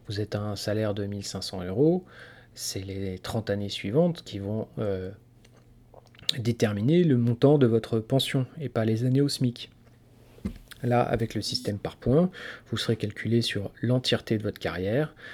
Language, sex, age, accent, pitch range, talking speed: French, male, 40-59, French, 105-125 Hz, 165 wpm